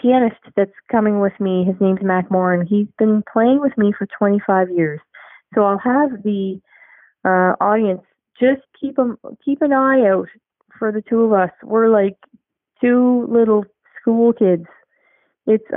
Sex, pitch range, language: female, 185-220 Hz, English